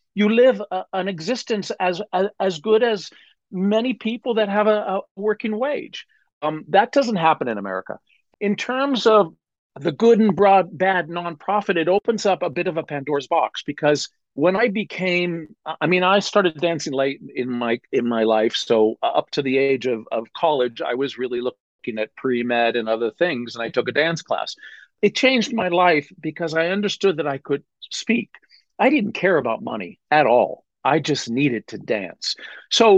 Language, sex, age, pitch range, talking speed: English, male, 50-69, 145-215 Hz, 190 wpm